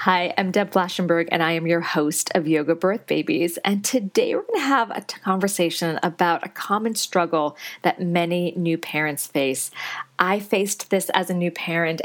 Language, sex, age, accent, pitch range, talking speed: English, female, 40-59, American, 160-195 Hz, 185 wpm